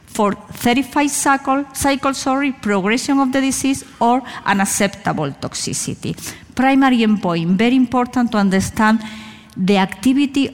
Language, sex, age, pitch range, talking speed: English, female, 40-59, 195-235 Hz, 115 wpm